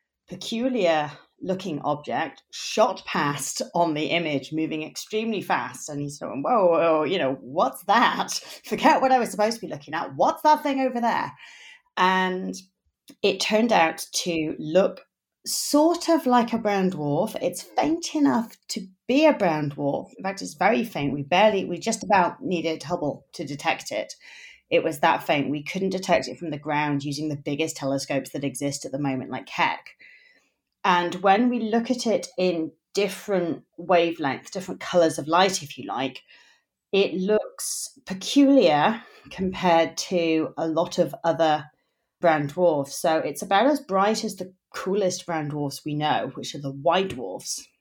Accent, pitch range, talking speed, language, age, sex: British, 155-215 Hz, 170 wpm, English, 30-49, female